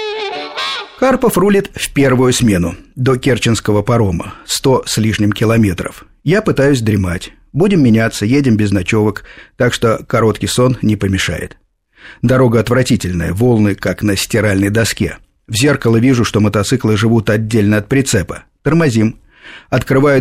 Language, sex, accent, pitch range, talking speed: Russian, male, native, 100-135 Hz, 130 wpm